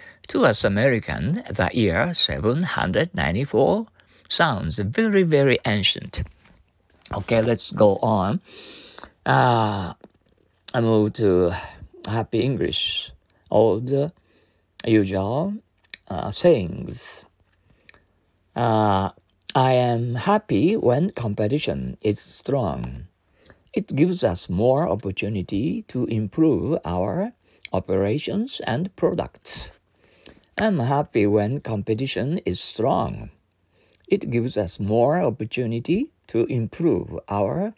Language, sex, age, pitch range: Japanese, male, 50-69, 100-155 Hz